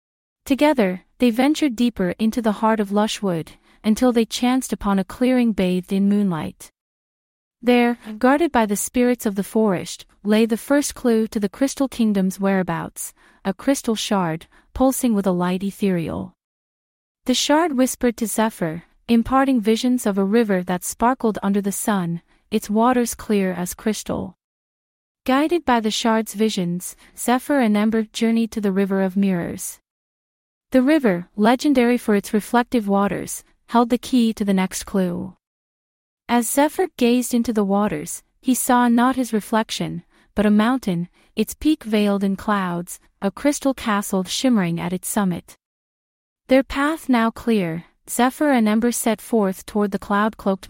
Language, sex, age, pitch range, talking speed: English, female, 30-49, 195-245 Hz, 155 wpm